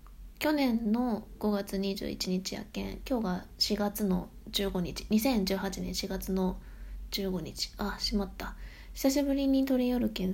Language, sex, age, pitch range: Japanese, female, 20-39, 185-225 Hz